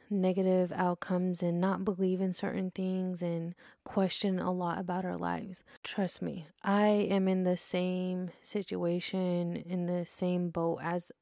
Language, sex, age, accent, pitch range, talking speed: English, female, 20-39, American, 180-205 Hz, 150 wpm